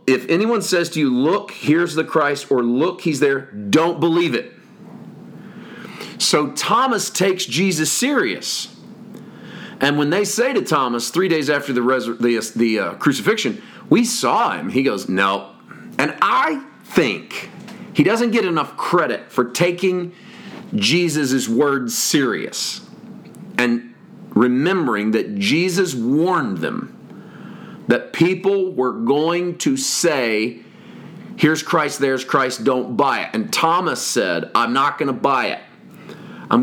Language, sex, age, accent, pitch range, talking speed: English, male, 40-59, American, 125-205 Hz, 130 wpm